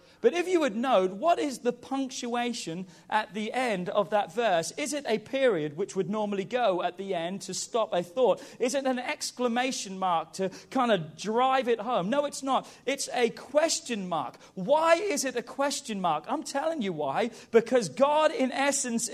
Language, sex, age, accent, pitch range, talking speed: English, male, 40-59, British, 215-285 Hz, 195 wpm